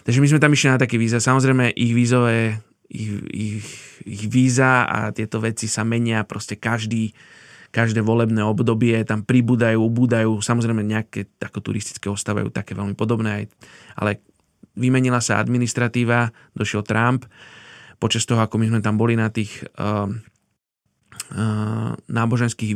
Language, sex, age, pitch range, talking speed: Slovak, male, 20-39, 110-125 Hz, 145 wpm